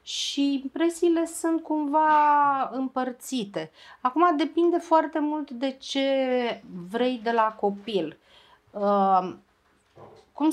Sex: female